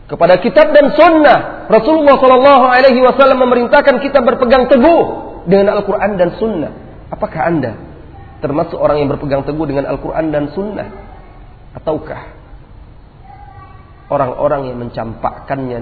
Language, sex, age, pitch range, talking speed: Malay, male, 40-59, 120-170 Hz, 120 wpm